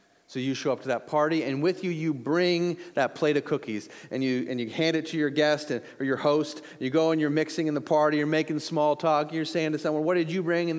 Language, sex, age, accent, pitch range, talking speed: English, male, 30-49, American, 145-175 Hz, 275 wpm